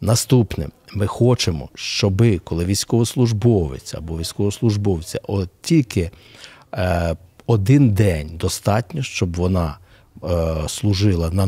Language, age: Ukrainian, 60-79